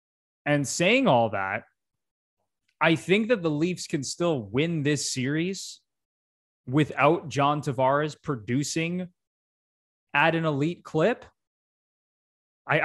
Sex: male